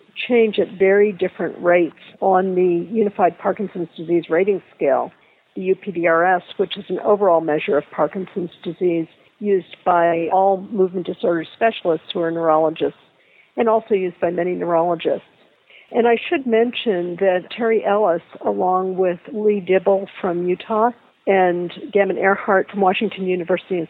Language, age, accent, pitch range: English, 50-69, American, 175-220 Hz